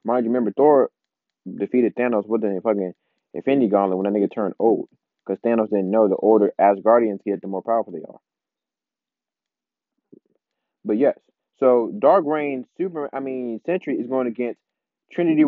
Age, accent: 20-39, American